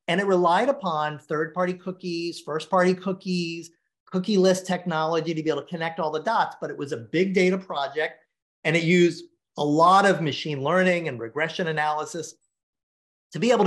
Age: 40-59